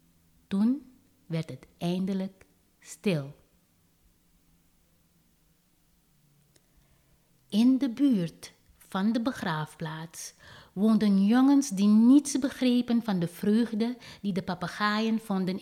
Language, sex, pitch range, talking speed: Dutch, female, 165-230 Hz, 90 wpm